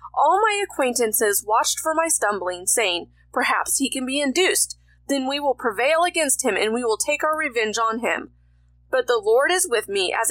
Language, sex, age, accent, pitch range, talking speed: English, female, 30-49, American, 220-320 Hz, 200 wpm